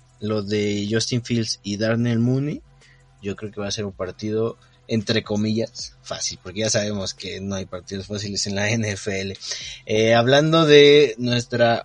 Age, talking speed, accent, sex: 20-39, 165 wpm, Mexican, male